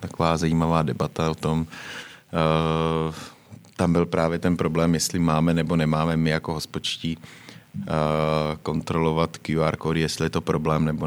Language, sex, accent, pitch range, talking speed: Czech, male, native, 80-85 Hz, 145 wpm